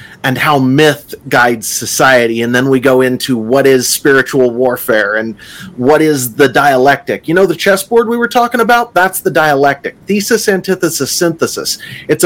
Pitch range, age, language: 135-185 Hz, 30-49, English